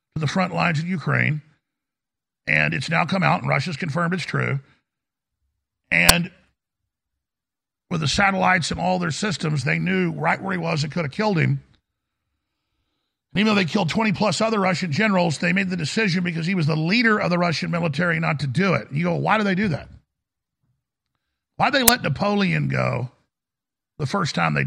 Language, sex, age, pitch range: English, male, 50-69, 150-195 Hz